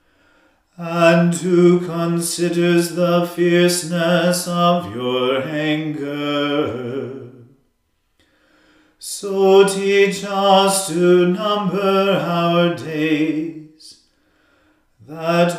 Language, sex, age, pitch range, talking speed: English, male, 40-59, 155-190 Hz, 60 wpm